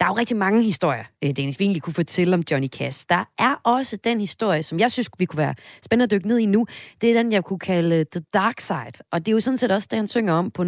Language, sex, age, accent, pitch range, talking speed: Danish, female, 30-49, native, 155-205 Hz, 285 wpm